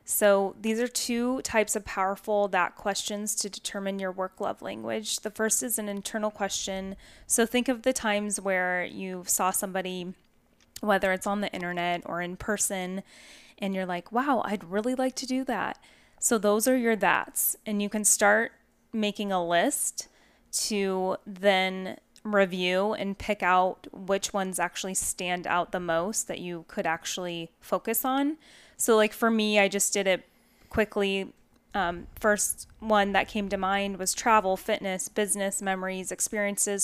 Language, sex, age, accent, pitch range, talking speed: English, female, 10-29, American, 190-230 Hz, 165 wpm